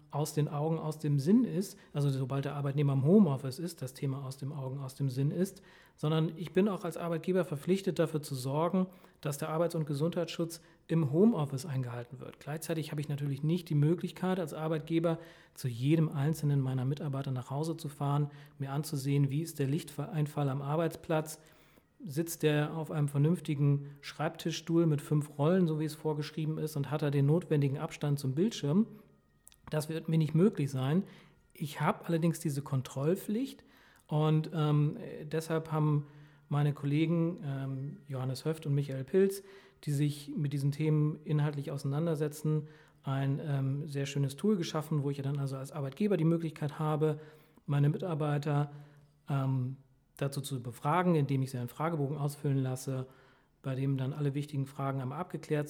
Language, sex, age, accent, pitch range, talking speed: German, male, 40-59, German, 140-165 Hz, 170 wpm